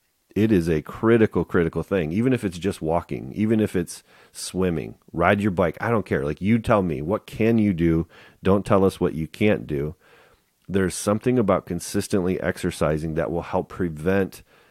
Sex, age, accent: male, 40-59, American